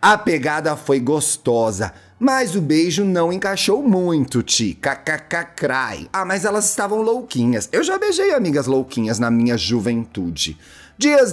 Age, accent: 30-49, Brazilian